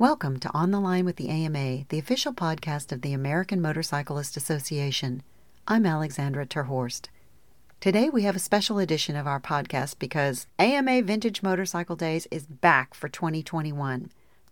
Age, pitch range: 40-59, 145-195 Hz